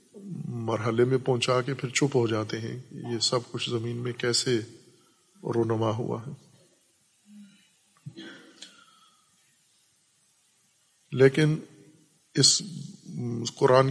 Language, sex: Urdu, male